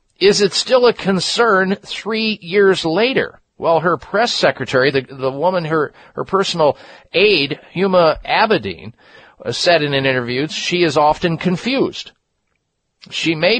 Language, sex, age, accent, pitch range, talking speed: English, male, 50-69, American, 130-180 Hz, 135 wpm